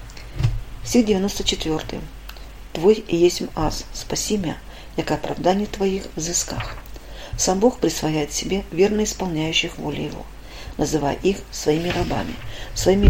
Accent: native